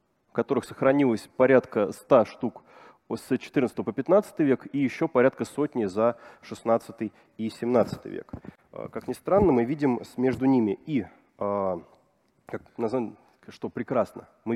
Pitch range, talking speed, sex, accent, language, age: 105-130 Hz, 130 wpm, male, native, Russian, 30-49